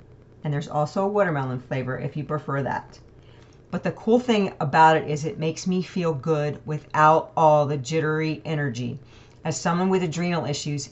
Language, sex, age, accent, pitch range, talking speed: English, female, 40-59, American, 145-185 Hz, 175 wpm